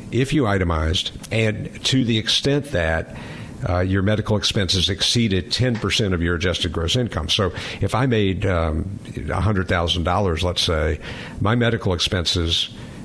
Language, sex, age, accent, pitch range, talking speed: English, male, 60-79, American, 85-110 Hz, 140 wpm